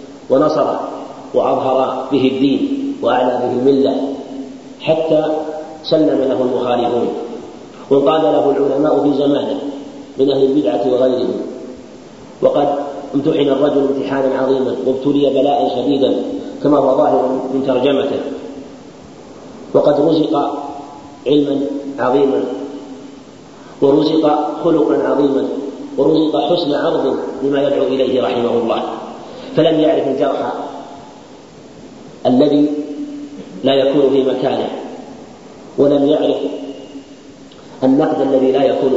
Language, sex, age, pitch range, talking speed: Arabic, male, 40-59, 135-150 Hz, 95 wpm